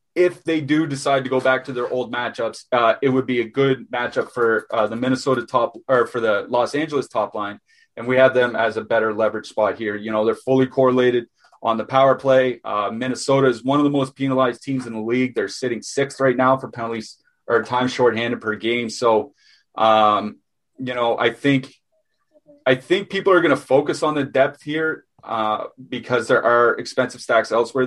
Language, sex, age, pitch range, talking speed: English, male, 30-49, 115-135 Hz, 210 wpm